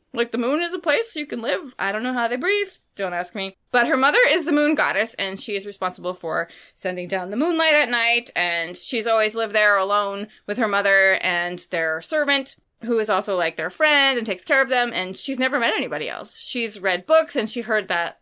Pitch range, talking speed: 185-255 Hz, 235 wpm